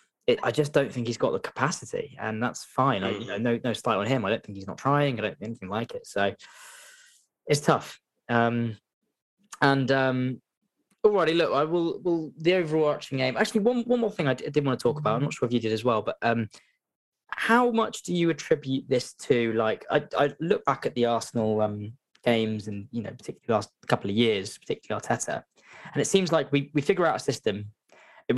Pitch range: 110-145 Hz